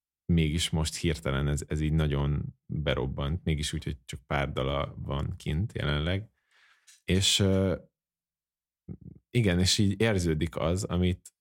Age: 30-49